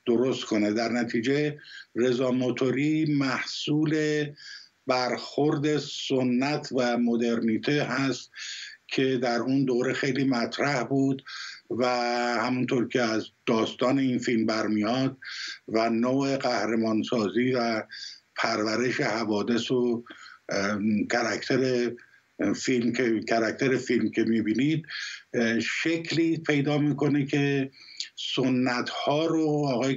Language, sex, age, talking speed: Persian, male, 50-69, 90 wpm